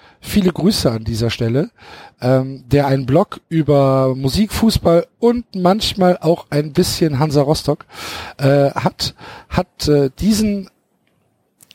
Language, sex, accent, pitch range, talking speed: German, male, German, 130-180 Hz, 130 wpm